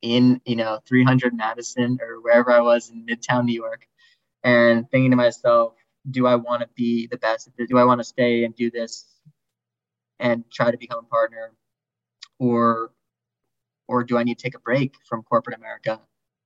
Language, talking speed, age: English, 180 wpm, 20-39